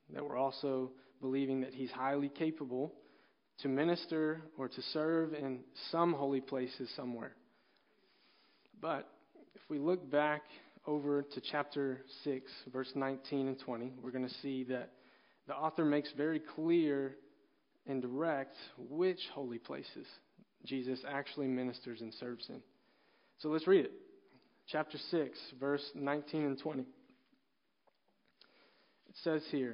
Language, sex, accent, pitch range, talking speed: English, male, American, 130-155 Hz, 130 wpm